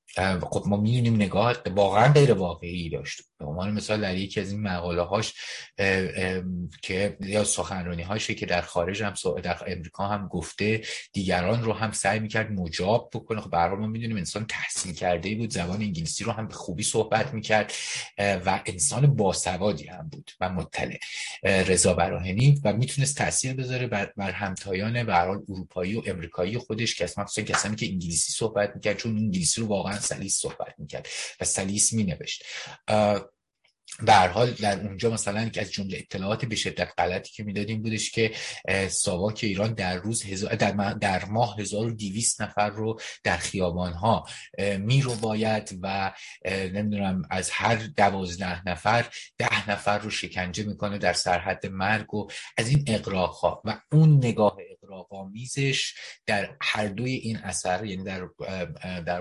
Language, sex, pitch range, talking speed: Persian, male, 90-110 Hz, 150 wpm